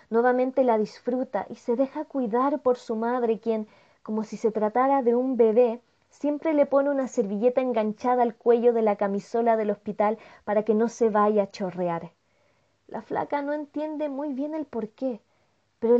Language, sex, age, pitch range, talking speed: Spanish, female, 20-39, 210-260 Hz, 175 wpm